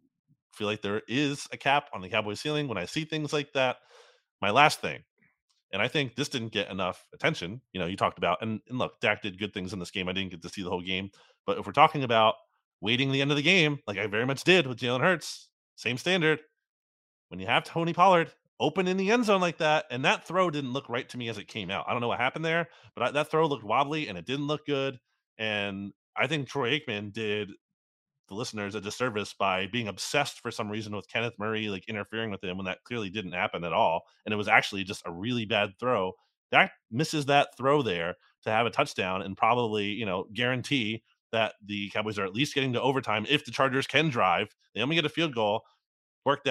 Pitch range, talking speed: 105-145 Hz, 240 wpm